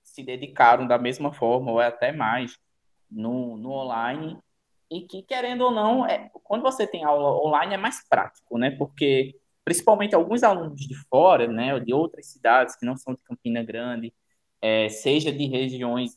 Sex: male